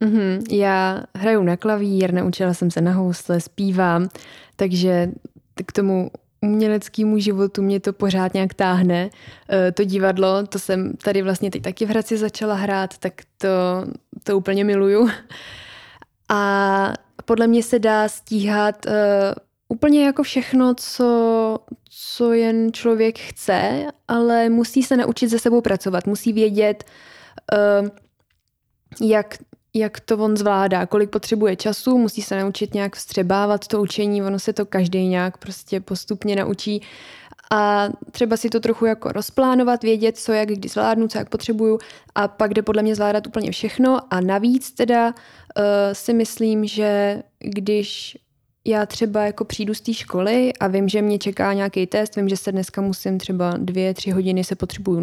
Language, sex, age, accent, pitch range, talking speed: Czech, female, 20-39, native, 195-225 Hz, 150 wpm